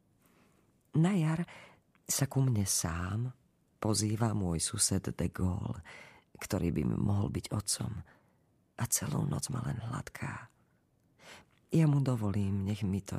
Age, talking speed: 40-59, 125 wpm